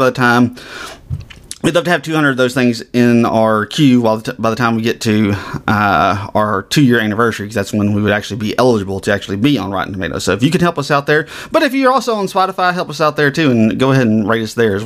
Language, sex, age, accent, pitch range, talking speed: English, male, 30-49, American, 115-145 Hz, 275 wpm